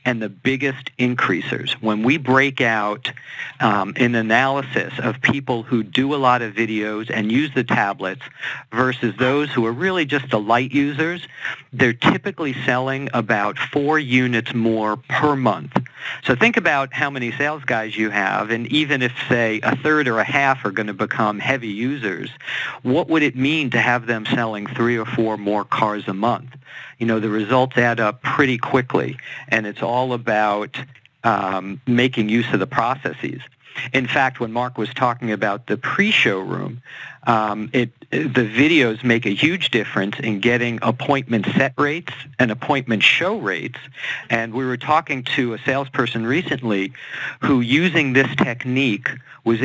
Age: 50-69